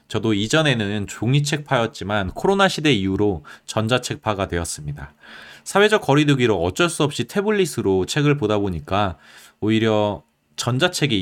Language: Korean